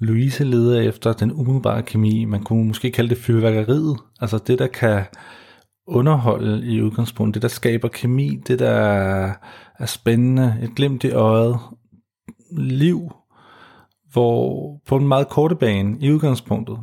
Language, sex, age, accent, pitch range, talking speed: Danish, male, 40-59, native, 110-135 Hz, 145 wpm